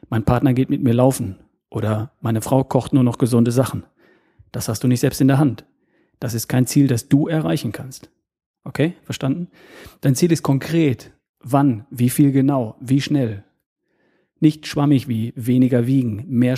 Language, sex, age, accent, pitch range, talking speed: German, male, 40-59, German, 120-140 Hz, 175 wpm